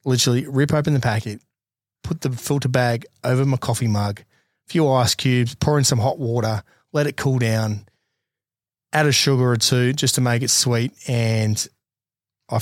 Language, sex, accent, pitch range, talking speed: English, male, Australian, 115-135 Hz, 180 wpm